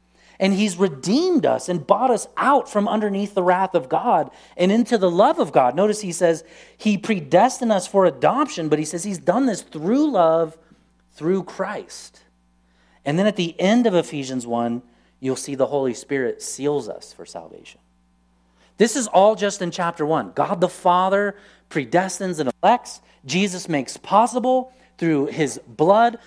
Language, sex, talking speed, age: English, male, 170 wpm, 30-49